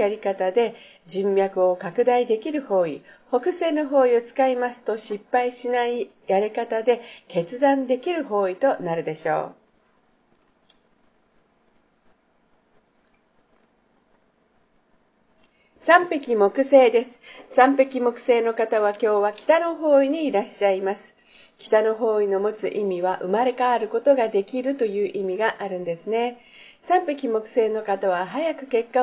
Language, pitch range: Japanese, 200-275 Hz